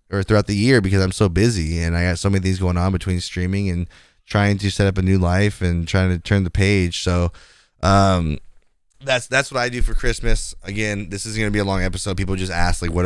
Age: 20-39